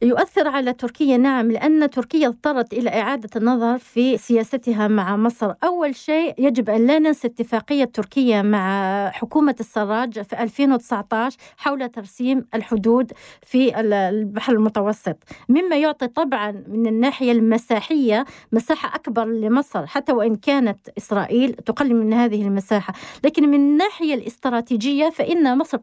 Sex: female